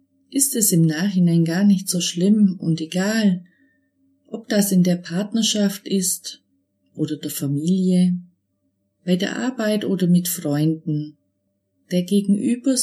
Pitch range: 150-190 Hz